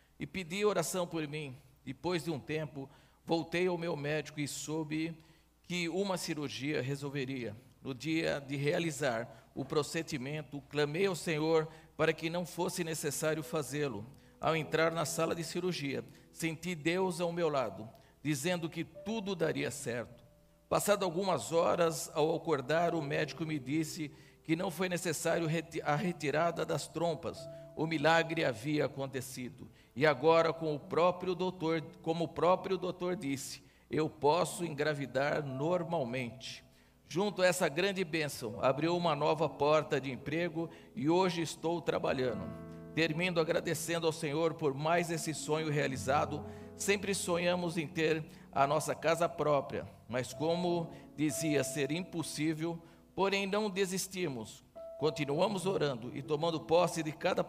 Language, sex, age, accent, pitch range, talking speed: Portuguese, male, 50-69, Brazilian, 145-170 Hz, 135 wpm